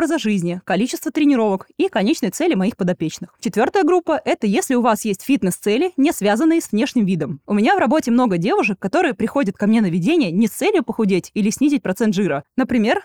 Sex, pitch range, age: female, 195-290 Hz, 20-39